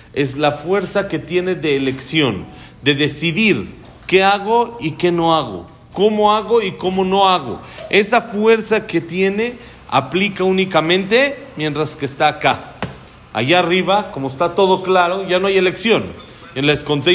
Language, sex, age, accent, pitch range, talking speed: Spanish, male, 40-59, Mexican, 135-175 Hz, 150 wpm